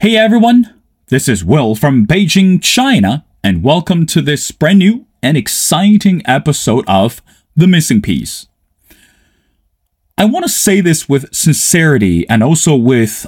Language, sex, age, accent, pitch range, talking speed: English, male, 30-49, American, 120-190 Hz, 140 wpm